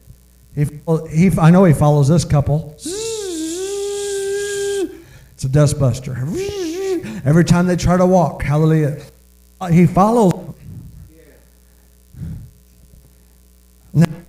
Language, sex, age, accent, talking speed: English, male, 50-69, American, 90 wpm